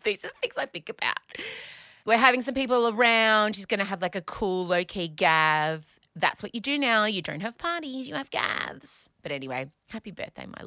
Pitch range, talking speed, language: 175-265 Hz, 215 wpm, English